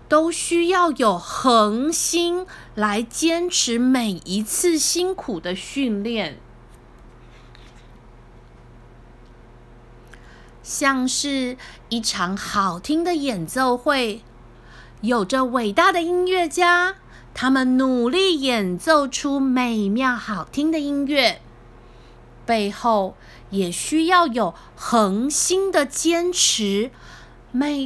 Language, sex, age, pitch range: Chinese, female, 20-39, 200-310 Hz